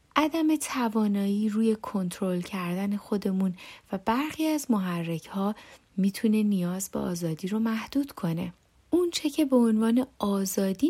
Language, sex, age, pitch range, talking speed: Persian, female, 30-49, 175-225 Hz, 125 wpm